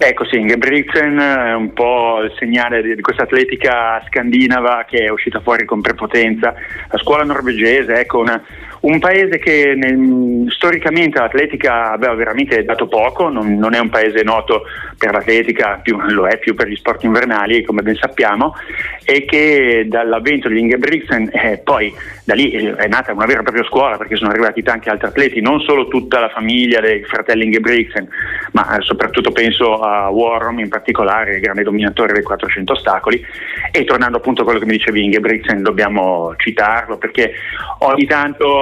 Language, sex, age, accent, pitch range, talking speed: Italian, male, 30-49, native, 115-135 Hz, 165 wpm